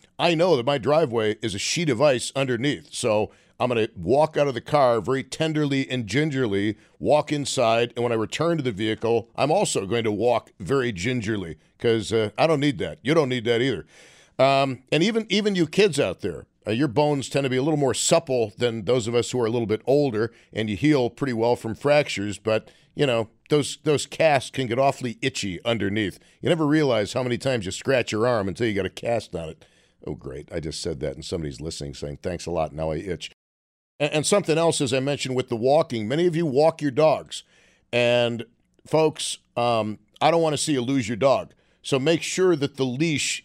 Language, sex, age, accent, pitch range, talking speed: English, male, 50-69, American, 115-150 Hz, 225 wpm